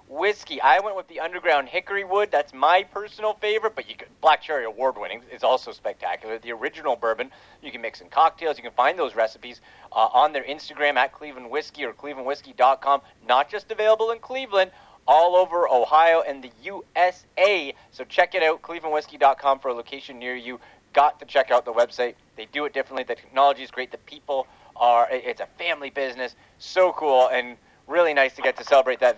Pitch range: 135-205 Hz